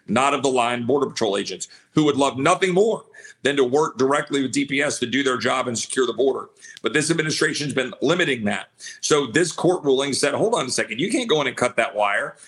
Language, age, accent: English, 50-69, American